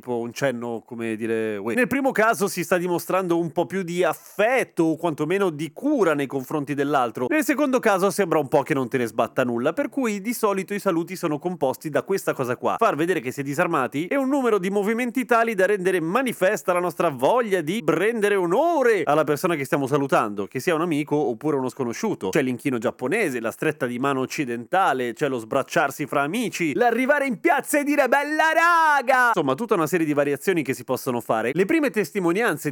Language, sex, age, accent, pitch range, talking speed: Italian, male, 30-49, native, 140-215 Hz, 205 wpm